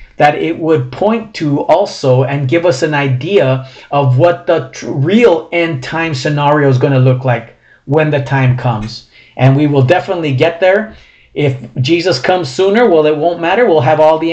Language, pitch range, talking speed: English, 130-170 Hz, 190 wpm